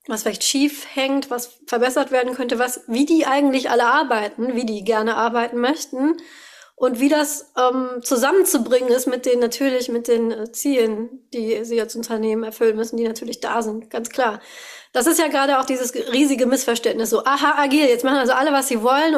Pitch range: 240-290 Hz